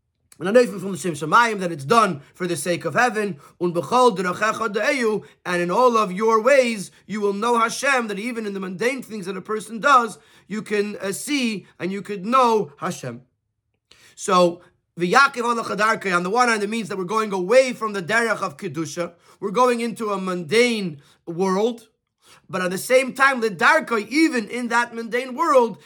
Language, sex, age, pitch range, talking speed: English, male, 30-49, 190-235 Hz, 180 wpm